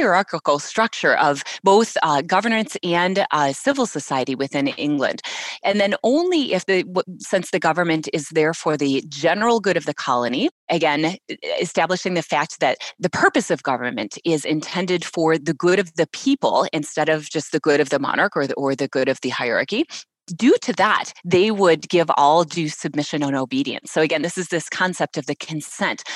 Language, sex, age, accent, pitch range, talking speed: English, female, 30-49, American, 150-215 Hz, 190 wpm